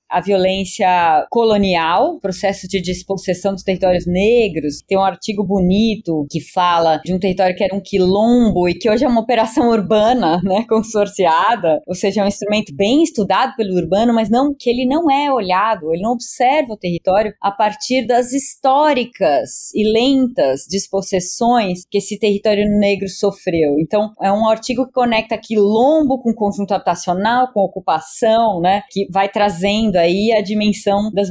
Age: 20-39